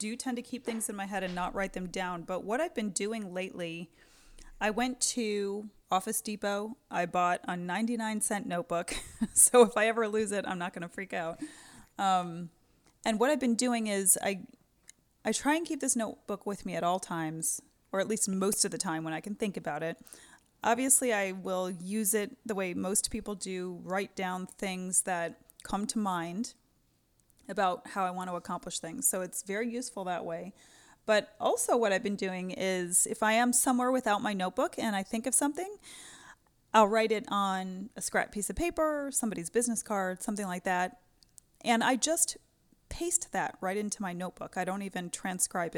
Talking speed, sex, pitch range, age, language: 195 wpm, female, 180-230 Hz, 30-49, English